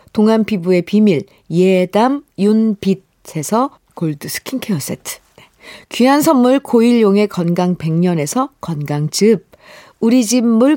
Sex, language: female, Korean